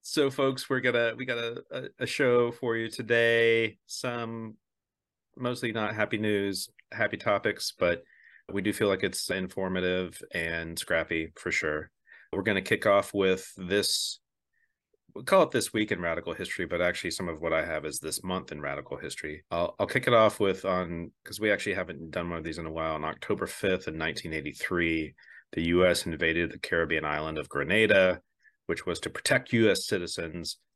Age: 30-49